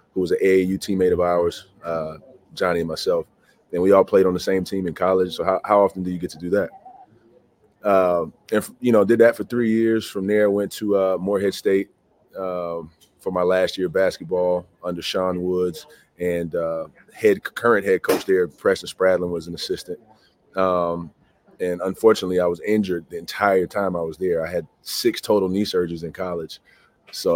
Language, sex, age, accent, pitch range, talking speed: English, male, 30-49, American, 85-105 Hz, 200 wpm